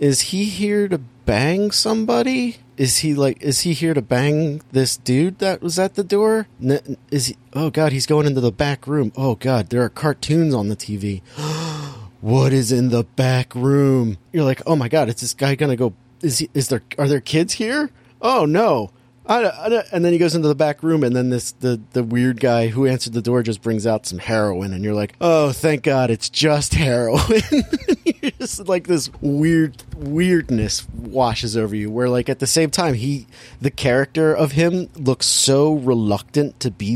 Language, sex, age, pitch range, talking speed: English, male, 30-49, 120-155 Hz, 205 wpm